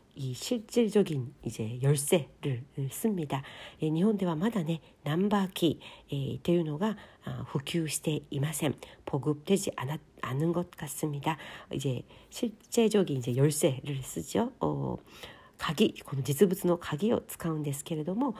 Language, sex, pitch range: Korean, female, 145-210 Hz